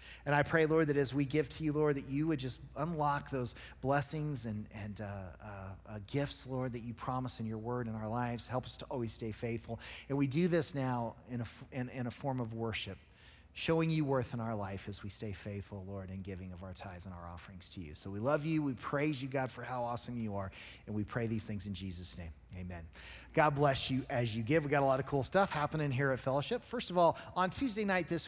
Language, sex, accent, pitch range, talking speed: English, male, American, 120-160 Hz, 255 wpm